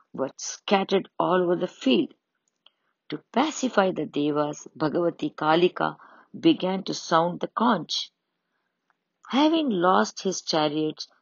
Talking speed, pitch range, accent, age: 110 wpm, 155-190 Hz, Indian, 50-69